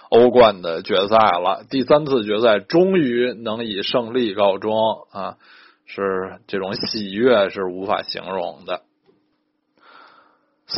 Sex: male